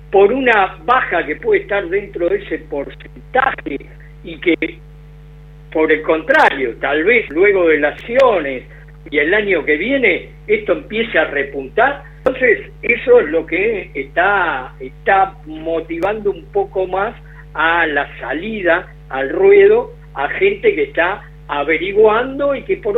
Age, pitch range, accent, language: 50-69, 150-230 Hz, Argentinian, Spanish